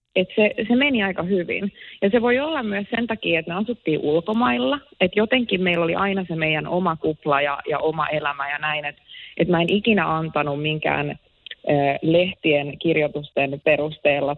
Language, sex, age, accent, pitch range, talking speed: Finnish, female, 30-49, native, 150-195 Hz, 180 wpm